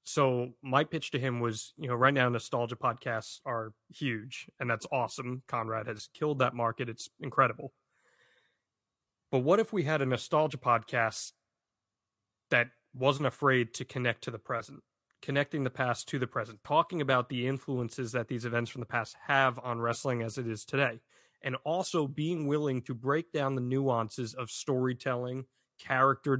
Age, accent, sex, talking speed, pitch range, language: 30-49, American, male, 170 wpm, 120-140 Hz, English